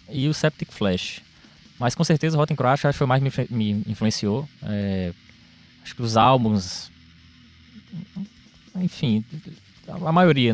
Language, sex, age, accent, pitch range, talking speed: Portuguese, male, 20-39, Brazilian, 105-130 Hz, 135 wpm